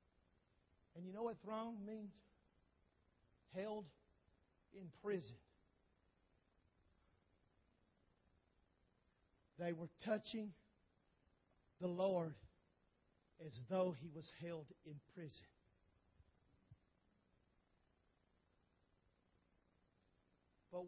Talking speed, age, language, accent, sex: 65 wpm, 50-69, English, American, male